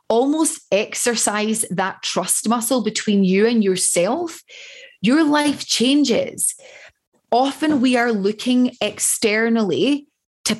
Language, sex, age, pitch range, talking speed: English, female, 20-39, 195-250 Hz, 100 wpm